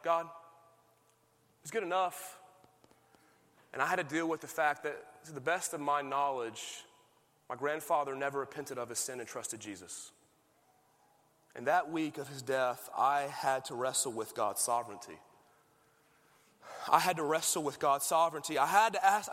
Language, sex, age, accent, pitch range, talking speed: English, male, 30-49, American, 150-250 Hz, 165 wpm